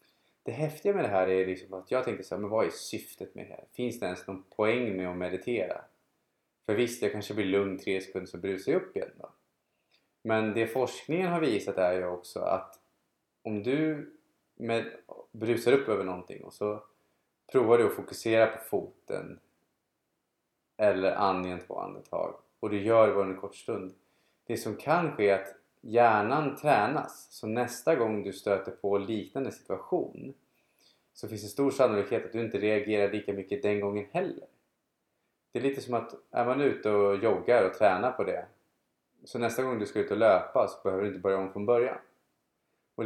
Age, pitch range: 20-39, 95-115 Hz